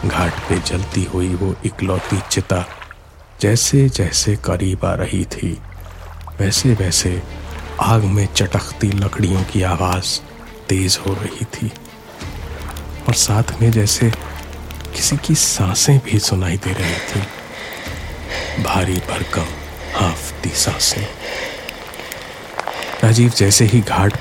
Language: Hindi